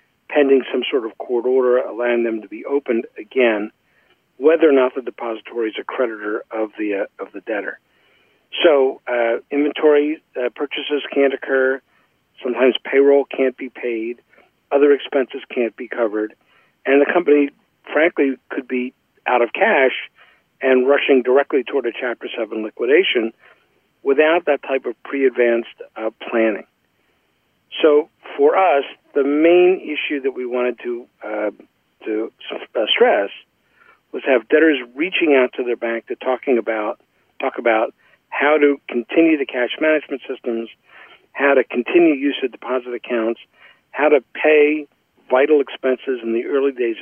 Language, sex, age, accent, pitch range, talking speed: English, male, 50-69, American, 120-150 Hz, 150 wpm